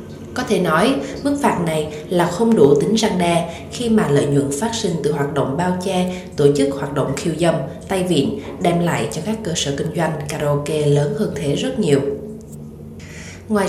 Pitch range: 145-205 Hz